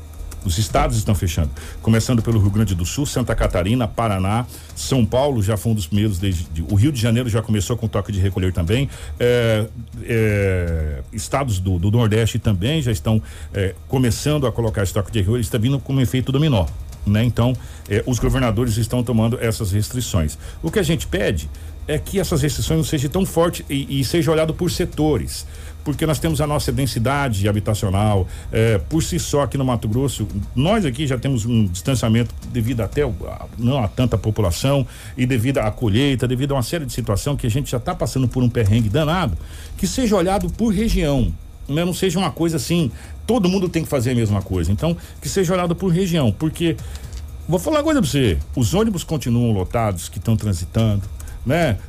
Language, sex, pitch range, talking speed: Portuguese, male, 100-140 Hz, 195 wpm